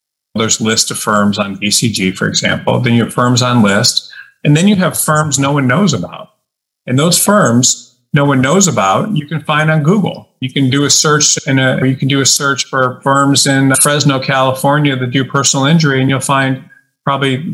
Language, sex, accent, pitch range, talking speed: English, male, American, 130-165 Hz, 200 wpm